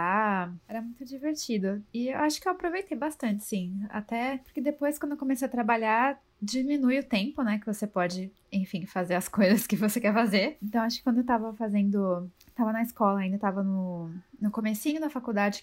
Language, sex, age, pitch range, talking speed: Portuguese, female, 20-39, 200-255 Hz, 195 wpm